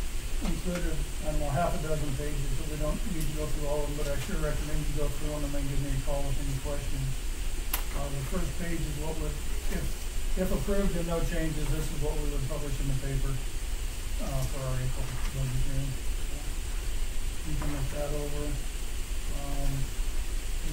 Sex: male